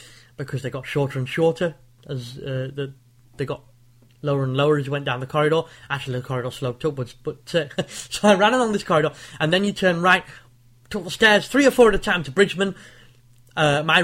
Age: 20-39